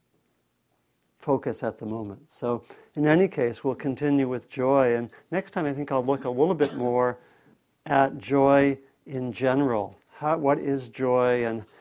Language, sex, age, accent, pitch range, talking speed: English, male, 50-69, American, 125-145 Hz, 165 wpm